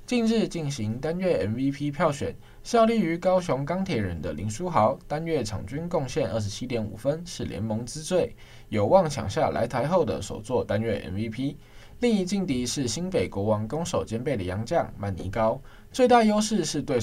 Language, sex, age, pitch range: Chinese, male, 20-39, 110-165 Hz